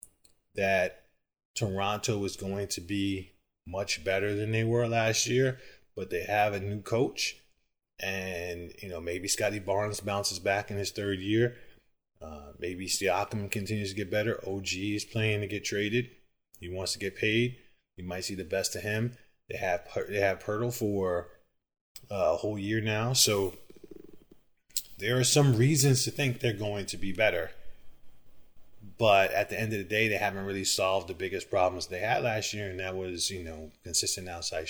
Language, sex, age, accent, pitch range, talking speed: English, male, 20-39, American, 95-110 Hz, 180 wpm